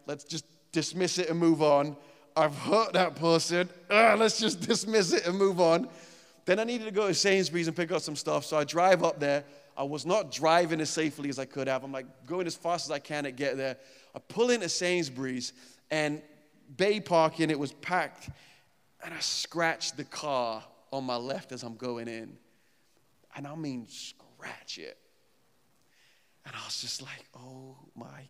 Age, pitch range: 30-49, 135-170 Hz